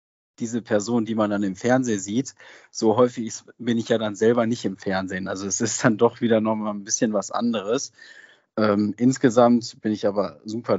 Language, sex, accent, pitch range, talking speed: German, male, German, 100-115 Hz, 195 wpm